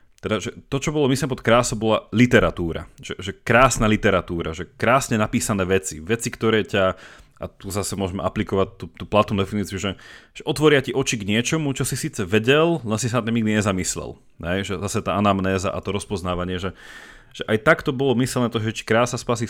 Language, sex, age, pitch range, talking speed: Slovak, male, 30-49, 95-125 Hz, 200 wpm